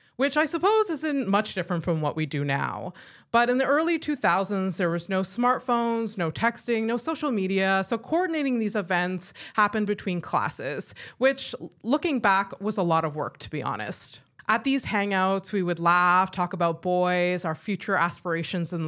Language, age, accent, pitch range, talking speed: English, 20-39, American, 165-215 Hz, 180 wpm